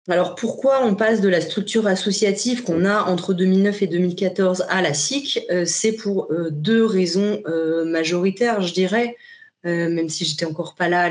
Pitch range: 170-220 Hz